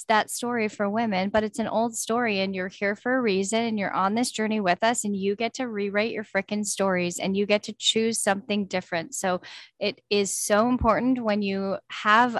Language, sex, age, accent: English, female, 10-29, American